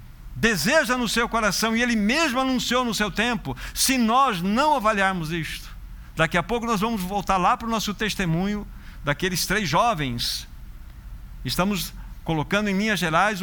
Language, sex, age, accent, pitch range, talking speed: Portuguese, male, 50-69, Brazilian, 155-215 Hz, 155 wpm